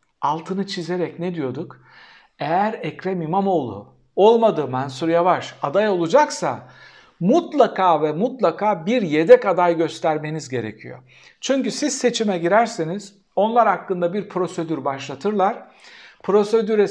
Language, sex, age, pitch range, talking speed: Turkish, male, 60-79, 160-235 Hz, 105 wpm